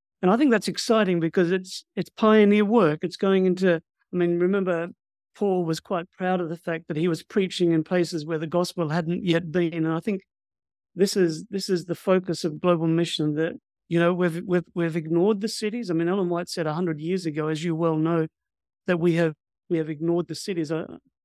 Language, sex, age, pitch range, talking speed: English, male, 50-69, 165-185 Hz, 215 wpm